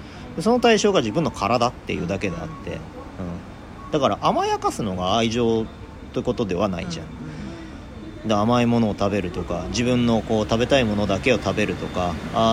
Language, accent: Japanese, native